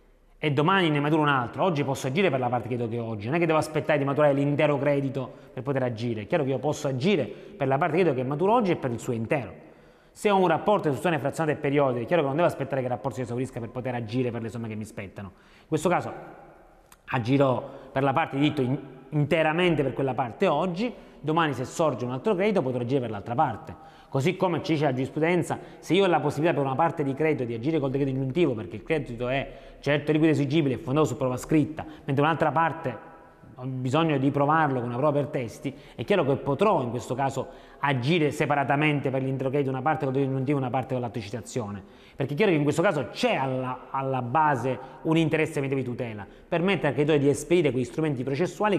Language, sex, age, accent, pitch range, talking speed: Italian, male, 30-49, native, 130-160 Hz, 230 wpm